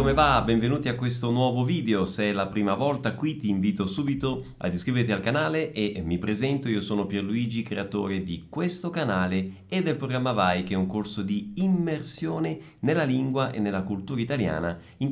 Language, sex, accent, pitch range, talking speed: Italian, male, native, 100-150 Hz, 185 wpm